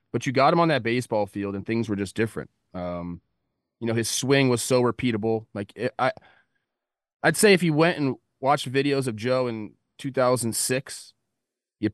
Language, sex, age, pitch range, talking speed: English, male, 30-49, 100-130 Hz, 185 wpm